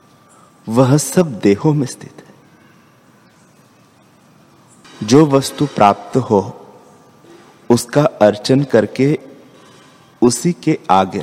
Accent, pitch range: native, 105-125 Hz